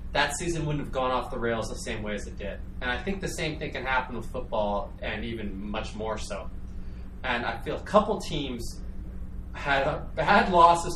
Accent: American